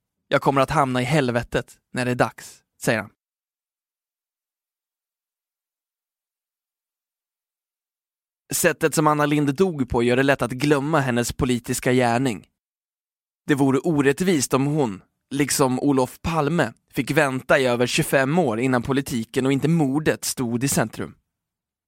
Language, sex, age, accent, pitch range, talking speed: Swedish, male, 20-39, native, 125-155 Hz, 130 wpm